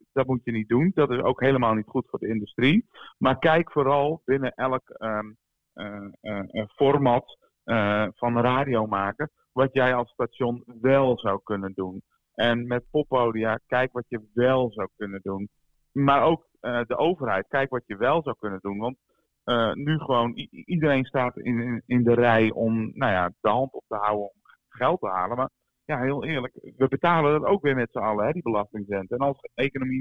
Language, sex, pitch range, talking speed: Dutch, male, 110-135 Hz, 190 wpm